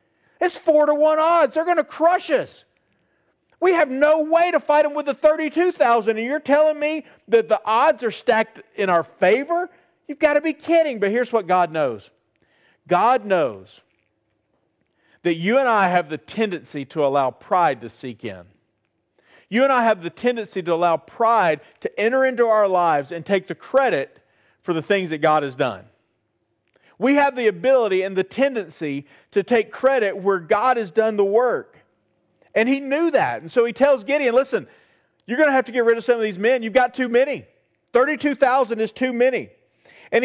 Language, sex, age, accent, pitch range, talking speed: English, male, 40-59, American, 195-285 Hz, 190 wpm